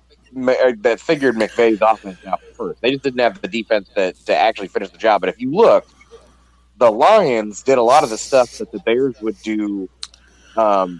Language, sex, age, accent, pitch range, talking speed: English, male, 30-49, American, 100-135 Hz, 195 wpm